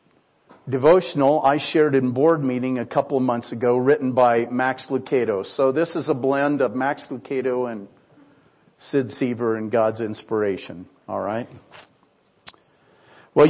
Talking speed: 140 wpm